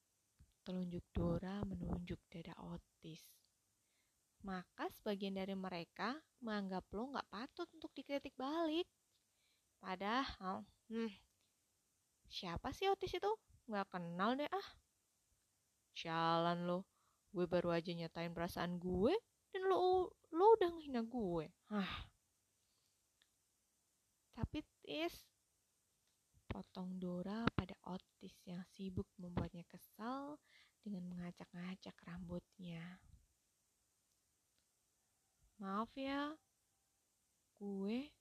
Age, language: 20-39, Indonesian